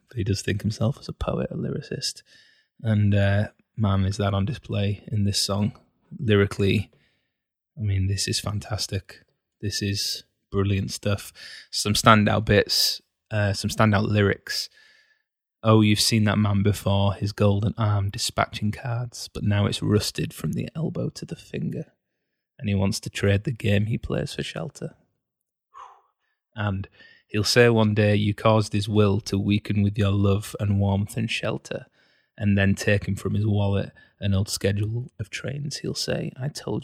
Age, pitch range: 20-39, 100-115 Hz